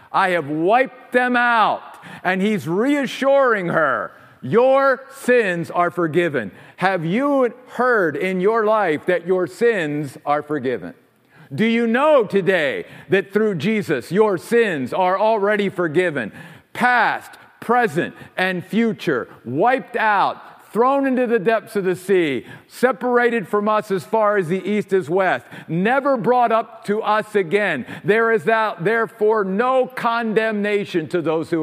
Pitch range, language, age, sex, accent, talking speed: 175-230 Hz, English, 50-69, male, American, 140 wpm